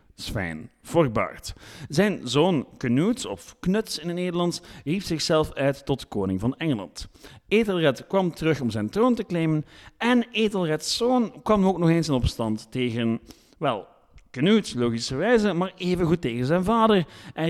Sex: male